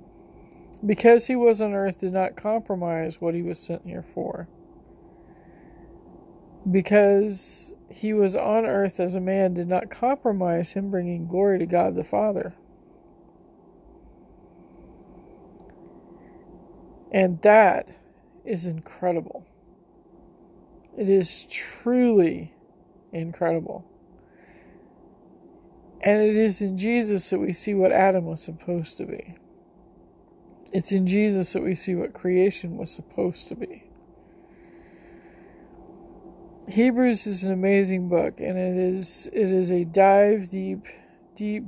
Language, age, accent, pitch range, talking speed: English, 40-59, American, 180-210 Hz, 115 wpm